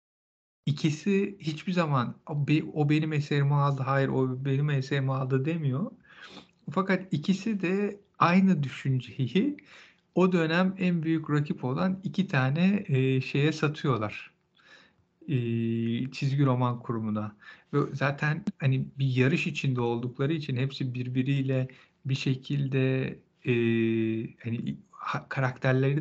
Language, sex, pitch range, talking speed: Turkish, male, 130-165 Hz, 110 wpm